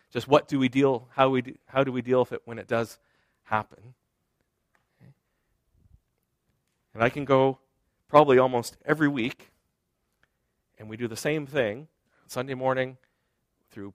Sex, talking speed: male, 155 wpm